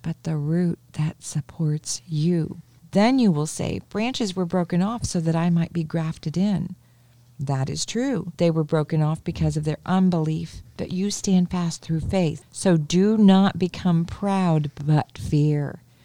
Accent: American